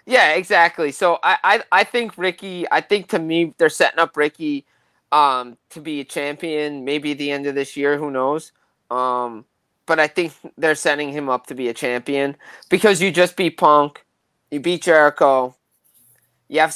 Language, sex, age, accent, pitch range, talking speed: English, male, 20-39, American, 140-175 Hz, 185 wpm